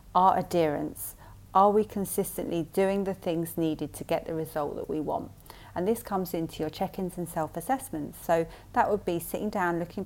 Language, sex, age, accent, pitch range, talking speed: English, female, 30-49, British, 155-185 Hz, 185 wpm